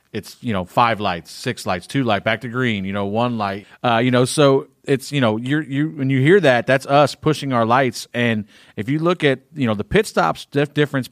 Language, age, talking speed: English, 40-59, 245 wpm